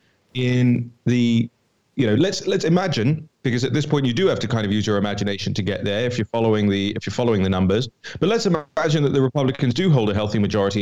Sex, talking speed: male, 240 wpm